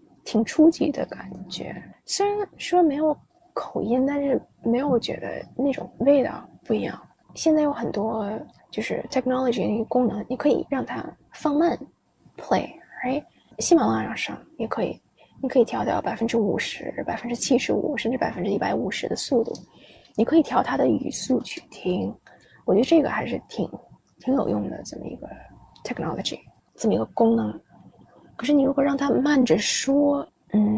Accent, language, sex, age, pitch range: native, Chinese, female, 20-39, 225-275 Hz